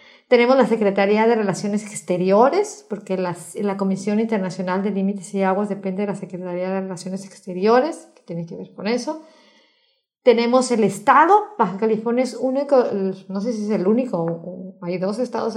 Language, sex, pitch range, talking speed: Spanish, female, 190-240 Hz, 170 wpm